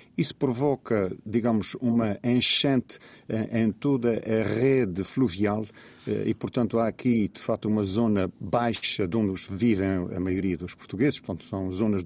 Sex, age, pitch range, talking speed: male, 50-69, 100-120 Hz, 145 wpm